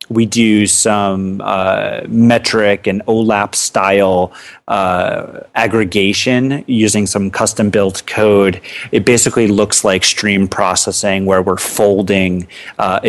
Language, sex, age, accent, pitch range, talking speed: English, male, 30-49, American, 95-115 Hz, 115 wpm